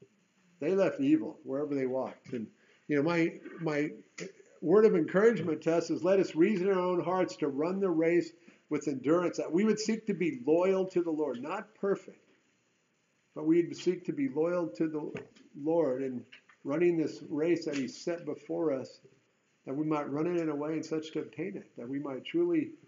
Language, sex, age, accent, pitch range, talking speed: English, male, 50-69, American, 130-170 Hz, 200 wpm